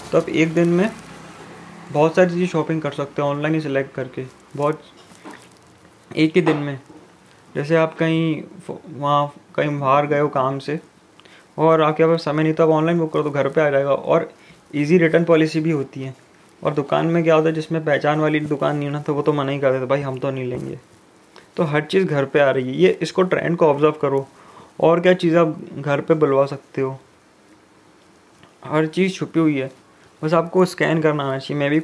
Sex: male